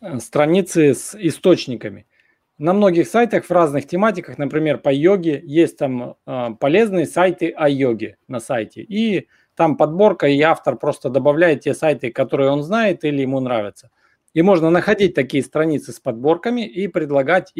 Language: Russian